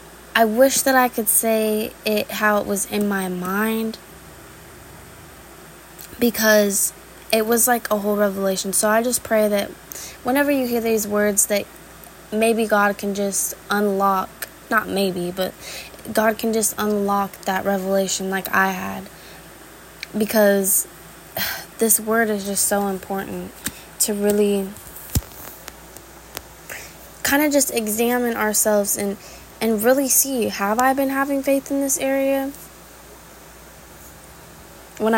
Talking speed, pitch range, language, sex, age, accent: 130 wpm, 200-230 Hz, English, female, 10-29, American